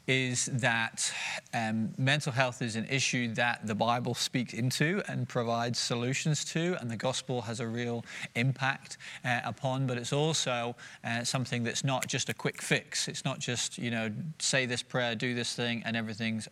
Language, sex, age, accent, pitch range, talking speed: English, male, 30-49, British, 120-145 Hz, 180 wpm